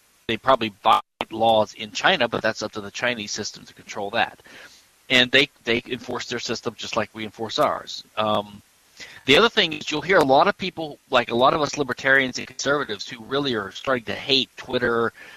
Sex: male